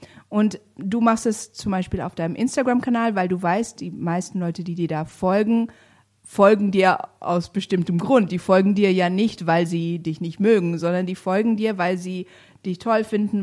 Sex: female